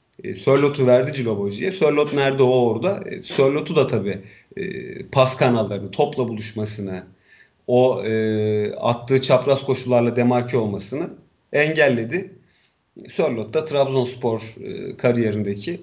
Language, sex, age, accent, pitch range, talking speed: Turkish, male, 40-59, native, 120-145 Hz, 95 wpm